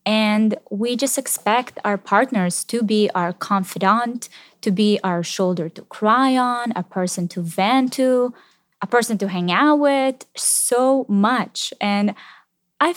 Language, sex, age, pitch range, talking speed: English, female, 20-39, 180-225 Hz, 150 wpm